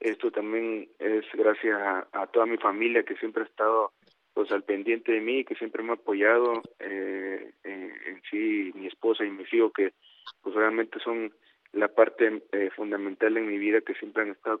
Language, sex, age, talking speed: Spanish, male, 30-49, 195 wpm